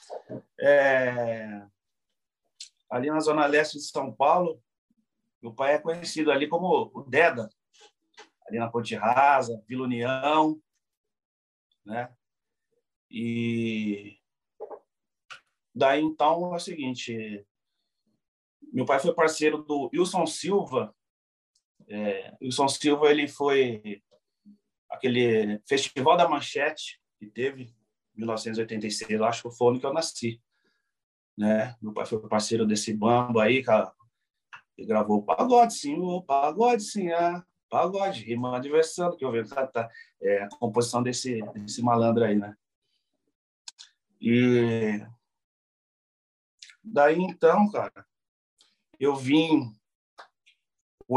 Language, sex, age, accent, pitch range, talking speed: Portuguese, male, 40-59, Brazilian, 115-155 Hz, 115 wpm